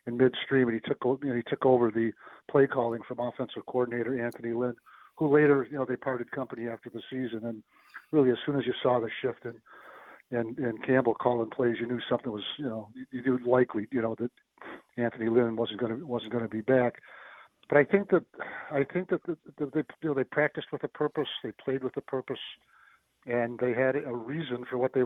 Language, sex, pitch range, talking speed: English, male, 120-140 Hz, 225 wpm